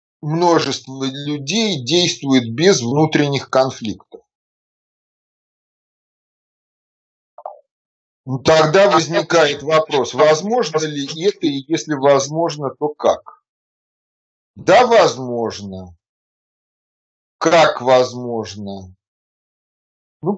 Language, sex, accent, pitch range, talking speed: Russian, male, native, 110-155 Hz, 65 wpm